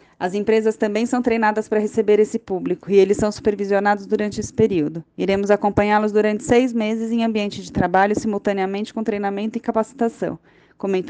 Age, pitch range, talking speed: 20-39, 190-220 Hz, 170 wpm